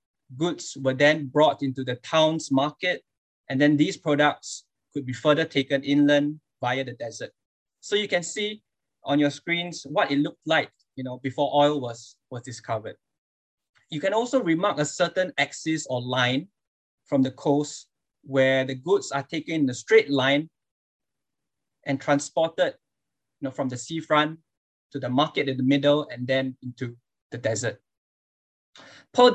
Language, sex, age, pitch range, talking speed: English, male, 20-39, 130-150 Hz, 160 wpm